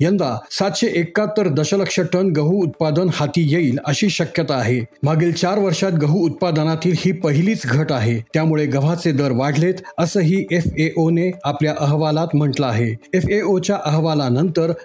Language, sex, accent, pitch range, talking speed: Marathi, male, native, 145-180 Hz, 150 wpm